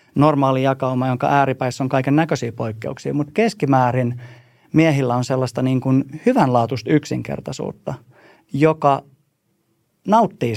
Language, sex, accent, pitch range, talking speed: Finnish, male, native, 120-140 Hz, 95 wpm